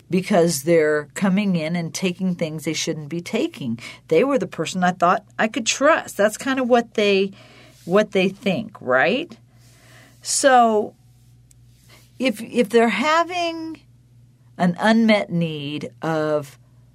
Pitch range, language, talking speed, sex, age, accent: 125-195 Hz, English, 135 wpm, female, 50-69, American